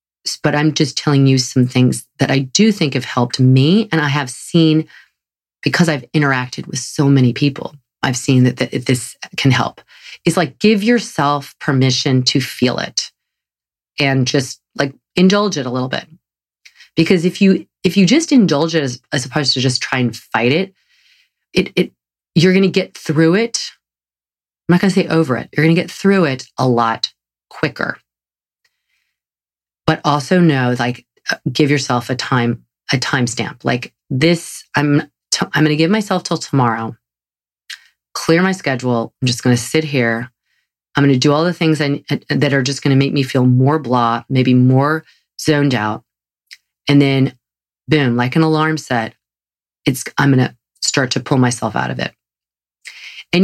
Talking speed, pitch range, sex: 180 wpm, 125-160 Hz, female